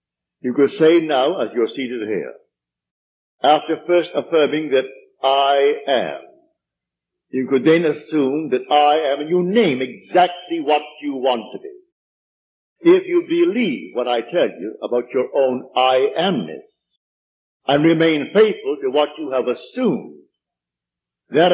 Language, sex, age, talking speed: English, male, 60-79, 140 wpm